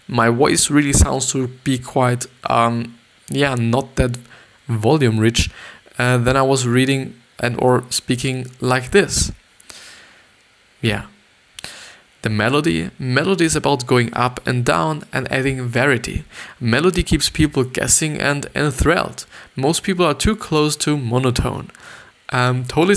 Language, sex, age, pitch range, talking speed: English, male, 20-39, 120-145 Hz, 135 wpm